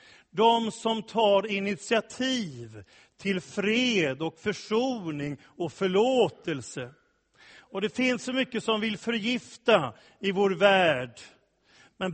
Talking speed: 110 wpm